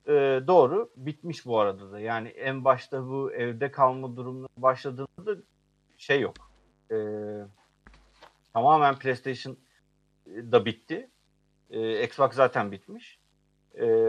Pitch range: 105-155 Hz